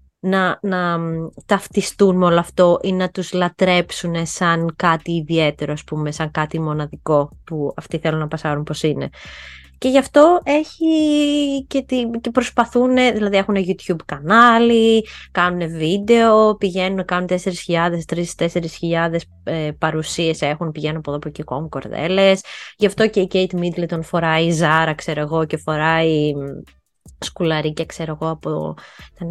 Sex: female